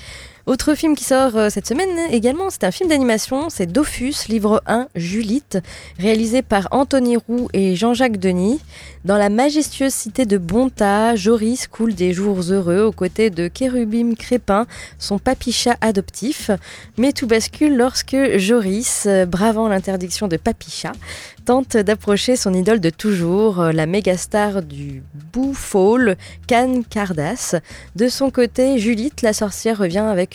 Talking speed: 140 wpm